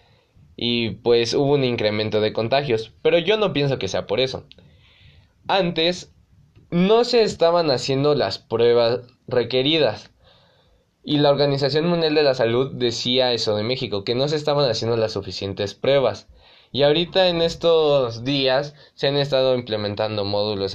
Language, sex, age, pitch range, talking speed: Spanish, male, 20-39, 110-145 Hz, 150 wpm